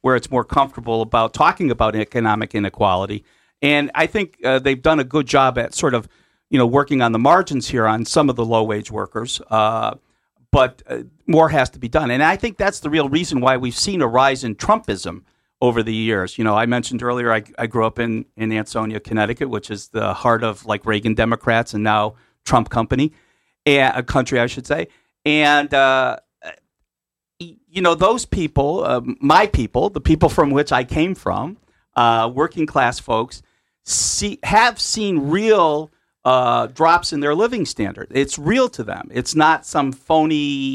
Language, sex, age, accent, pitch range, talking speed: English, male, 50-69, American, 115-145 Hz, 190 wpm